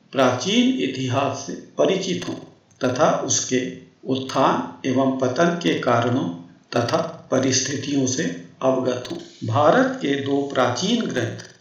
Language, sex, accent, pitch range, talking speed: Hindi, male, native, 125-170 Hz, 115 wpm